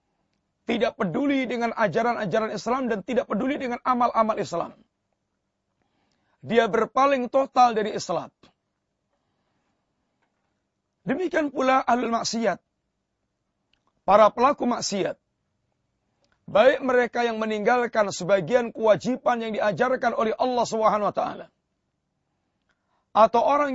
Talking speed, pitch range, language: 90 wpm, 210-245 Hz, Indonesian